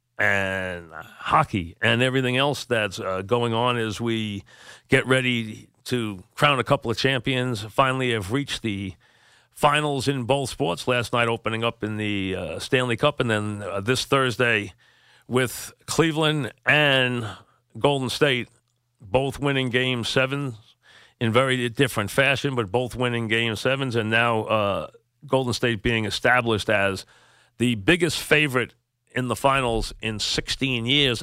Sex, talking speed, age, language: male, 145 wpm, 50-69, English